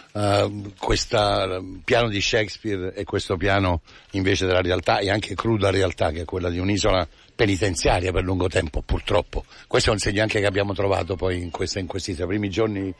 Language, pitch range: Italian, 100-130 Hz